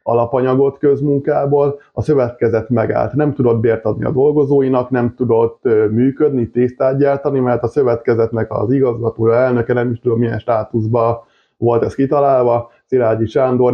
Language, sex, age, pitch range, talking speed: Hungarian, male, 20-39, 115-130 Hz, 140 wpm